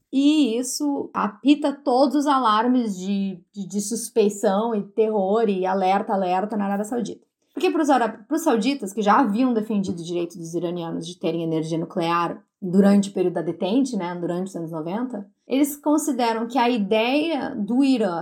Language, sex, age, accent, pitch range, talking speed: Portuguese, female, 20-39, Brazilian, 210-265 Hz, 170 wpm